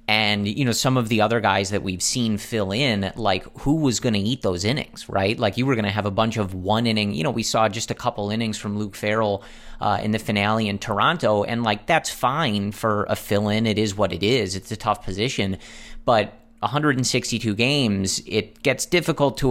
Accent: American